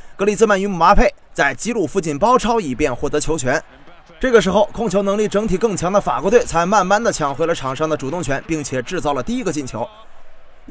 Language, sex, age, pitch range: Chinese, male, 20-39, 150-210 Hz